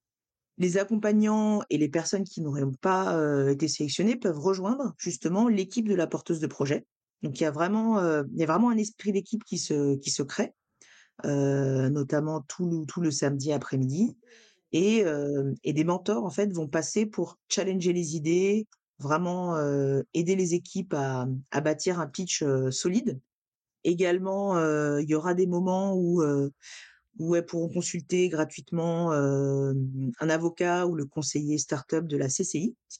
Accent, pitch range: French, 145-190 Hz